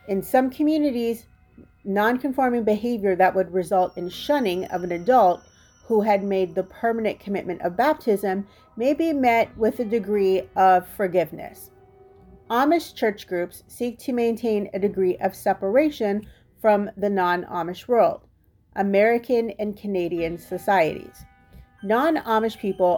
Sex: female